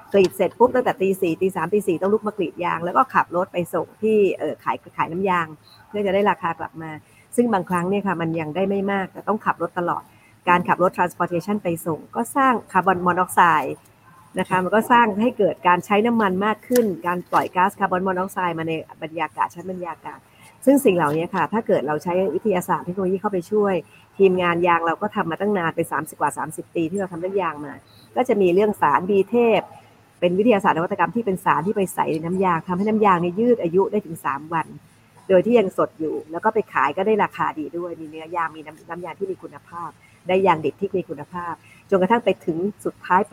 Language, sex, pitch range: Thai, female, 165-200 Hz